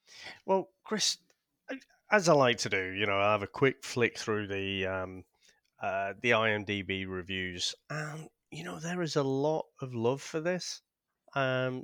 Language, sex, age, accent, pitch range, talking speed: English, male, 30-49, British, 100-145 Hz, 165 wpm